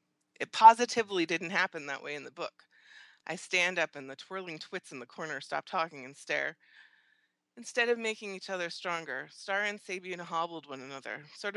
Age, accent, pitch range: 20-39, American, 145-195 Hz